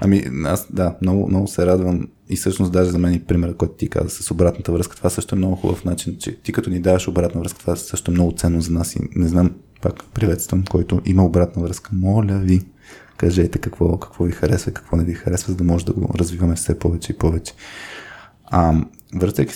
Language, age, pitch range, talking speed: Bulgarian, 20-39, 85-100 Hz, 220 wpm